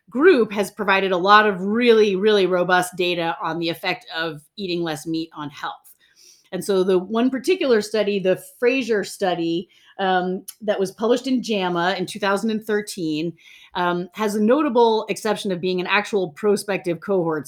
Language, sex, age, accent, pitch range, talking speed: English, female, 30-49, American, 170-210 Hz, 160 wpm